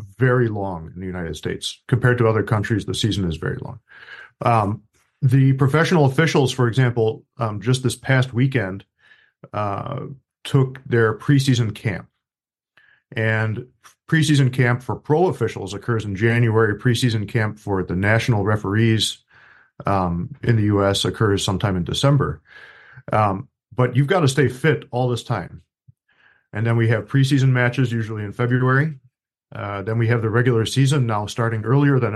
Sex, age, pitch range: male, 40-59, 110-135 Hz